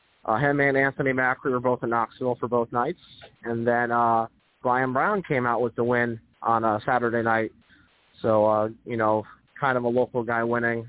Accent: American